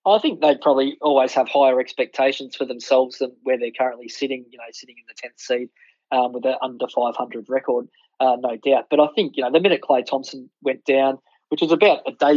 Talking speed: 230 wpm